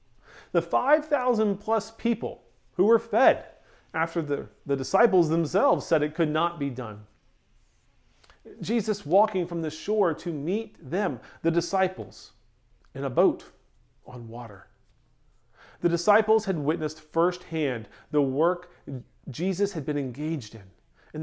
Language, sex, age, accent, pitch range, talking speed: English, male, 40-59, American, 125-190 Hz, 125 wpm